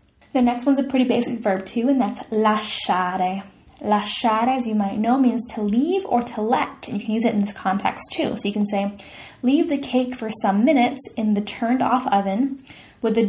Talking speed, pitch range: 210 wpm, 215-275 Hz